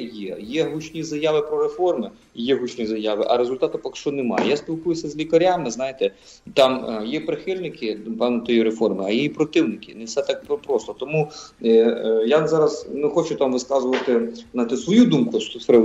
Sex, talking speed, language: male, 165 wpm, English